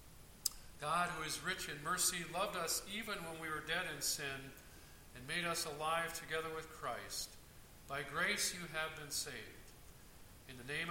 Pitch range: 140-170 Hz